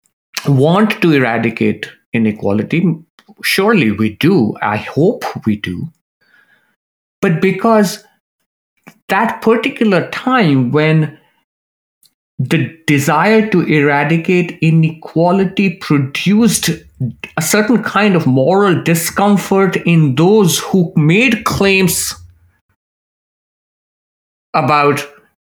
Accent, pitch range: Indian, 140-195 Hz